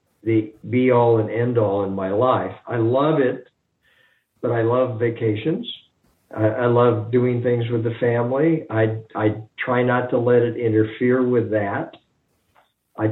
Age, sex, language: 50-69, male, English